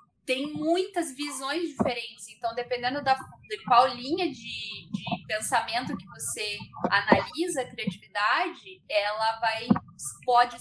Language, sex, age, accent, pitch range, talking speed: Portuguese, female, 10-29, Brazilian, 235-315 Hz, 120 wpm